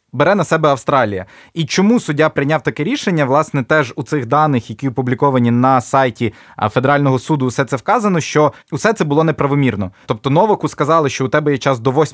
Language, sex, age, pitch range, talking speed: Ukrainian, male, 20-39, 130-160 Hz, 190 wpm